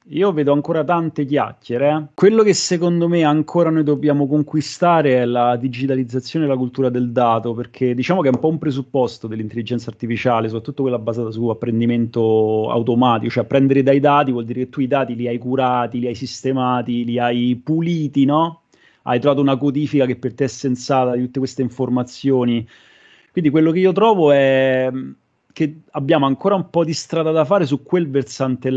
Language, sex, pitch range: Italian, male, 120-145 Hz